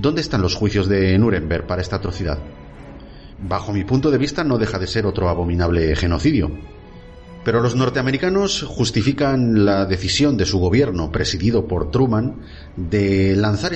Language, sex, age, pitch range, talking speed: Spanish, male, 40-59, 85-115 Hz, 155 wpm